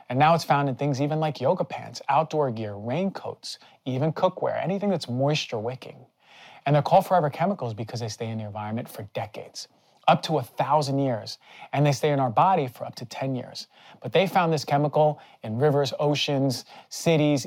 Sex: male